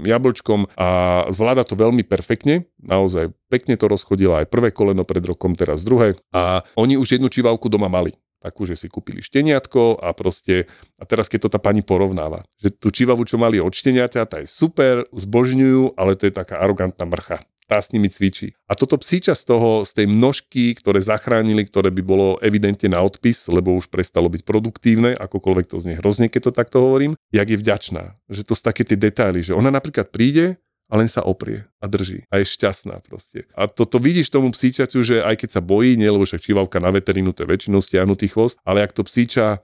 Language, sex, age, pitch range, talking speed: Slovak, male, 40-59, 95-120 Hz, 200 wpm